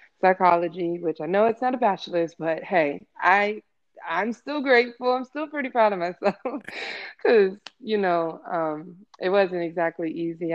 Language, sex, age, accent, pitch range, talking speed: English, female, 20-39, American, 170-210 Hz, 165 wpm